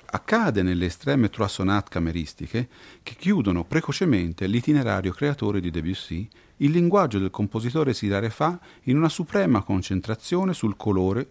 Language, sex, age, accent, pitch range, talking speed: Italian, male, 40-59, native, 95-130 Hz, 125 wpm